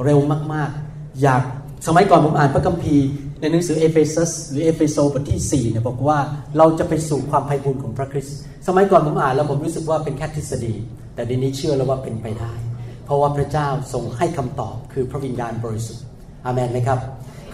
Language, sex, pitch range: Thai, male, 130-170 Hz